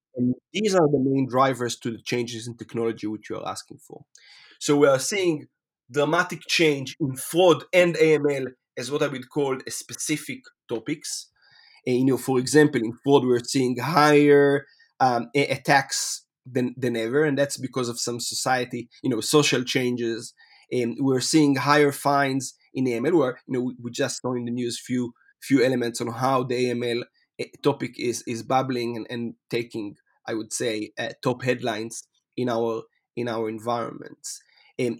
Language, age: English, 30-49